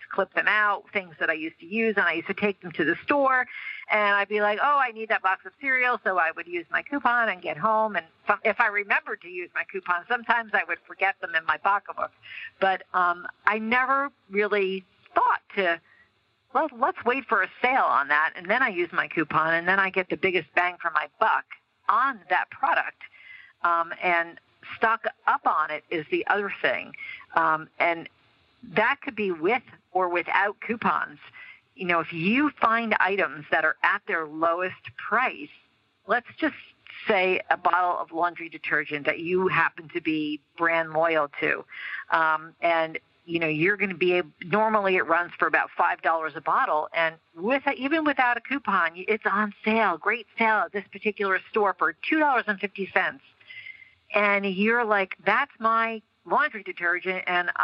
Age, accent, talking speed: 50-69, American, 185 wpm